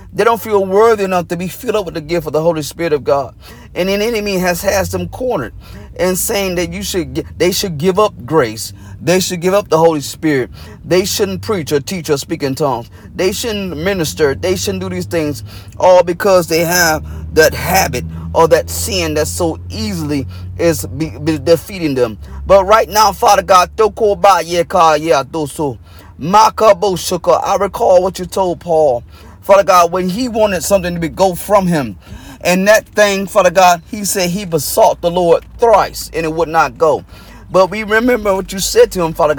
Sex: male